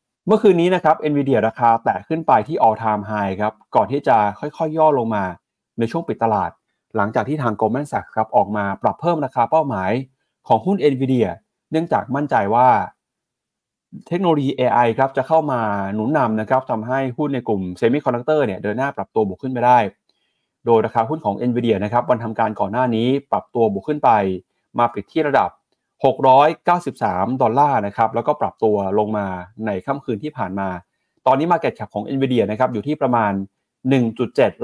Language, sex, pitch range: Thai, male, 110-140 Hz